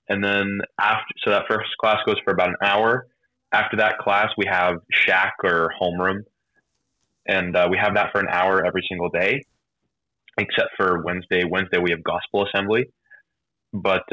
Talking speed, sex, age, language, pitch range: 170 wpm, male, 20-39, English, 90-105 Hz